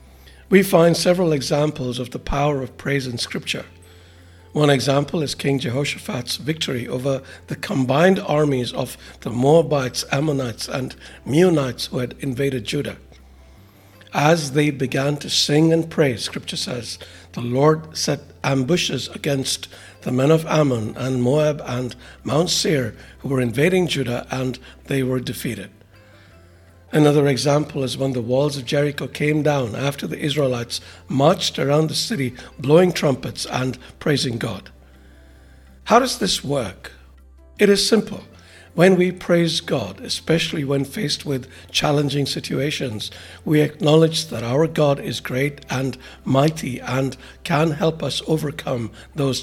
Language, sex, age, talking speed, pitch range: English, male, 60-79, 140 wpm, 110-150 Hz